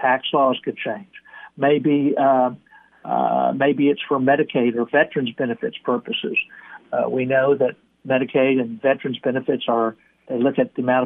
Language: English